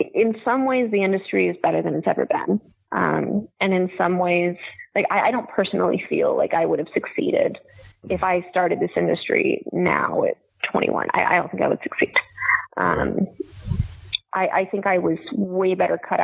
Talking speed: 190 wpm